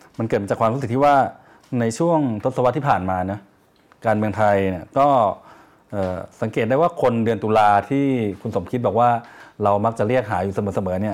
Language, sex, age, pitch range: Thai, male, 20-39, 100-120 Hz